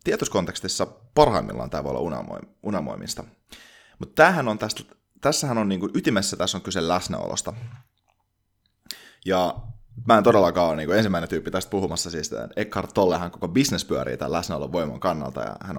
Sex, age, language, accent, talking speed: male, 30-49, Finnish, native, 150 wpm